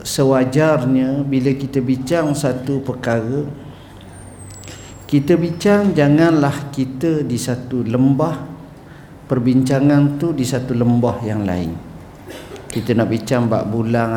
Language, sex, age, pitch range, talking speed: Malay, male, 50-69, 115-145 Hz, 105 wpm